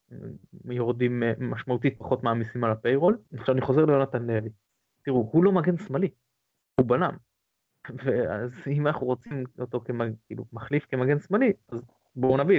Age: 20-39